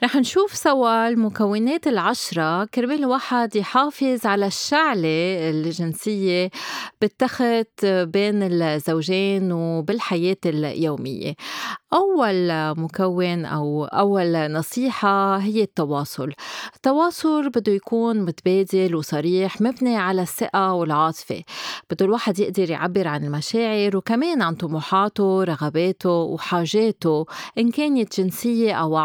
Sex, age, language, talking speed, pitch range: female, 30-49, Arabic, 95 wpm, 175-230 Hz